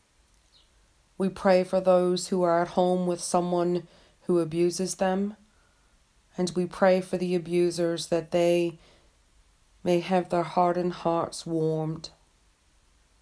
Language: English